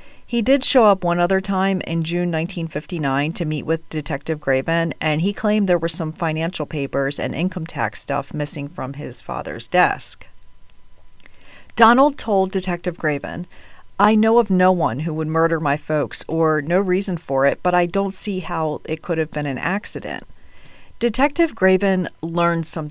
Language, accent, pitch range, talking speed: English, American, 145-190 Hz, 175 wpm